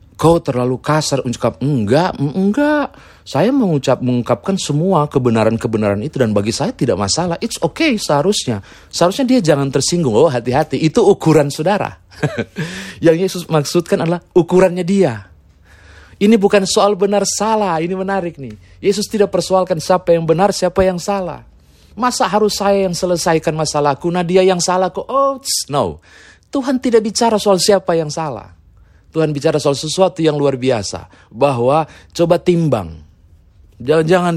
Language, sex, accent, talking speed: Indonesian, male, native, 145 wpm